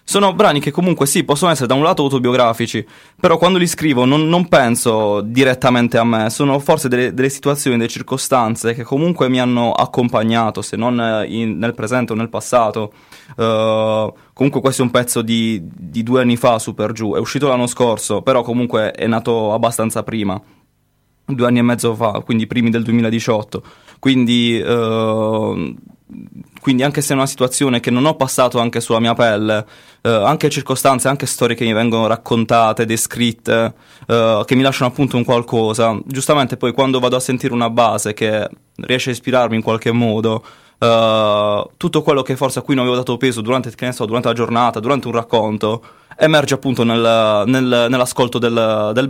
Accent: native